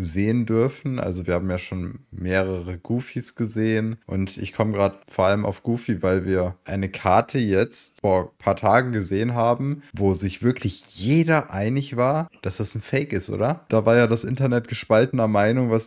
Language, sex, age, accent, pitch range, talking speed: German, male, 20-39, German, 100-130 Hz, 185 wpm